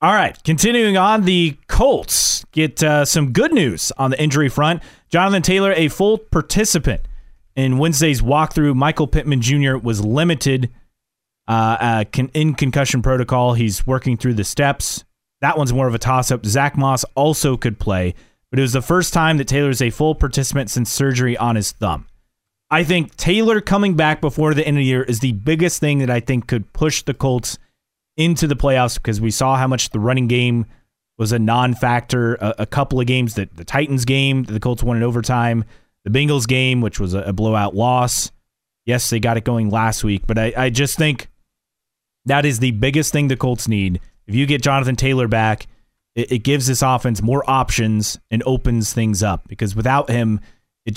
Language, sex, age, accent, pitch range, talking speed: English, male, 30-49, American, 115-145 Hz, 195 wpm